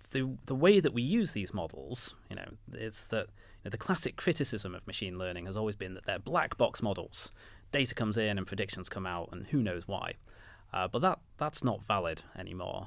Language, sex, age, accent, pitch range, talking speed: English, male, 30-49, British, 95-115 Hz, 215 wpm